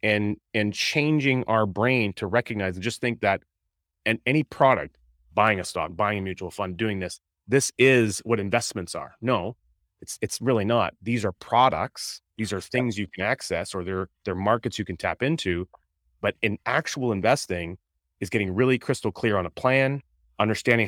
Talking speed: 180 wpm